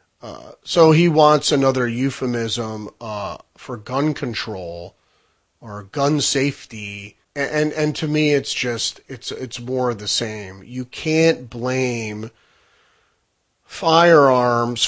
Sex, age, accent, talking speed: male, 30-49, American, 120 wpm